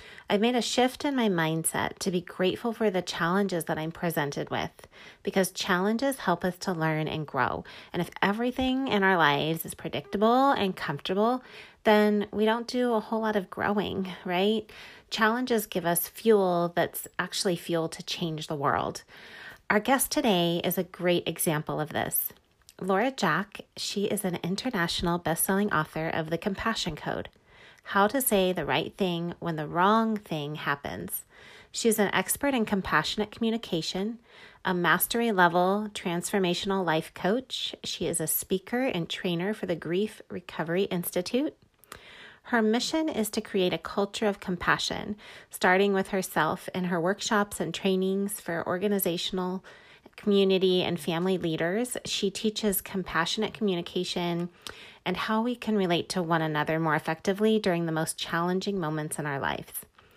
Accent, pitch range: American, 170-215 Hz